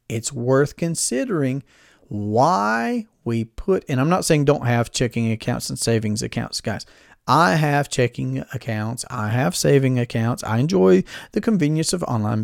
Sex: male